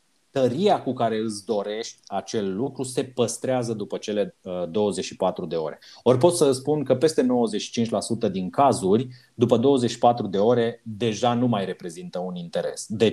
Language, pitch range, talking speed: Romanian, 110-135 Hz, 155 wpm